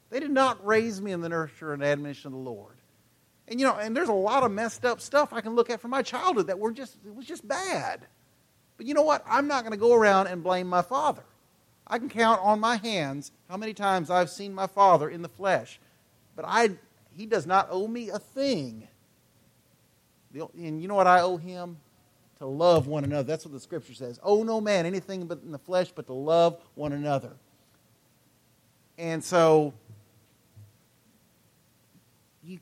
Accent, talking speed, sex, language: American, 200 wpm, male, English